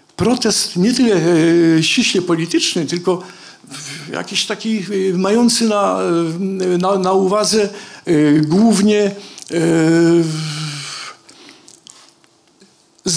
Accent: native